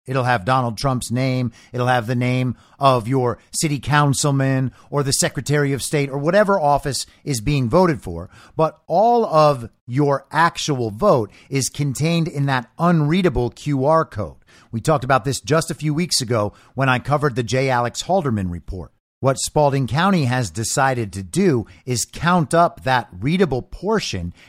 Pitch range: 120-155 Hz